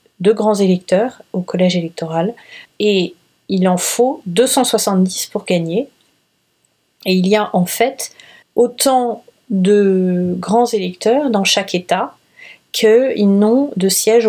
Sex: female